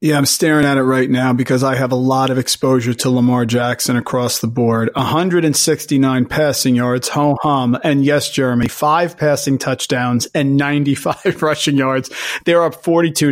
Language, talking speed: English, 165 wpm